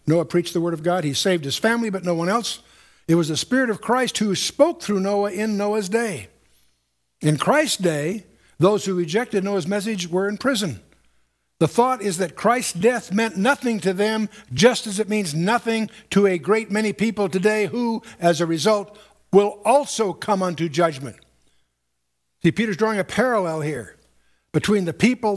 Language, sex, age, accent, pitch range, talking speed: English, male, 60-79, American, 145-210 Hz, 180 wpm